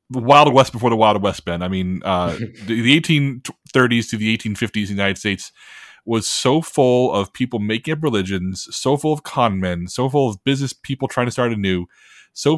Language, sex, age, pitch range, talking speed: English, male, 20-39, 100-125 Hz, 210 wpm